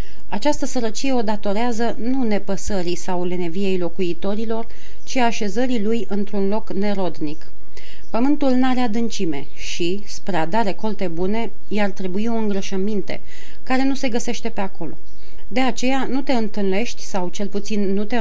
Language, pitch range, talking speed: Romanian, 190-230 Hz, 145 wpm